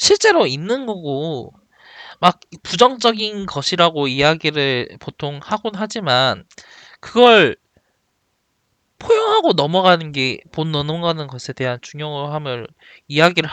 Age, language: 20-39, Korean